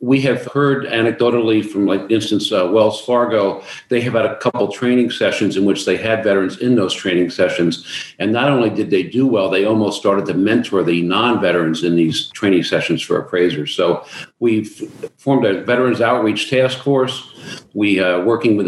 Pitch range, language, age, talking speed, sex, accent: 95-120 Hz, English, 50-69, 190 wpm, male, American